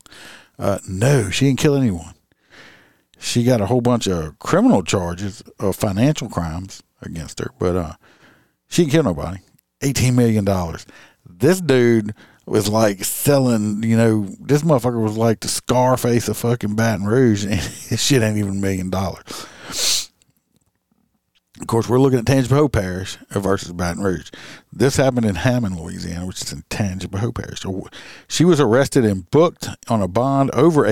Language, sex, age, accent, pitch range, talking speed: English, male, 50-69, American, 95-125 Hz, 160 wpm